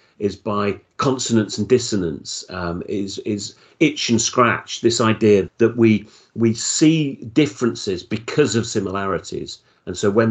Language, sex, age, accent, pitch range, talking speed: English, male, 40-59, British, 95-115 Hz, 140 wpm